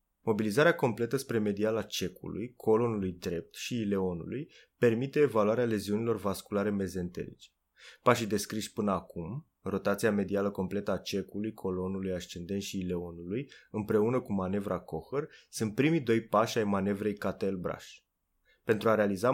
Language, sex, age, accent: Romanian, male, 20-39, native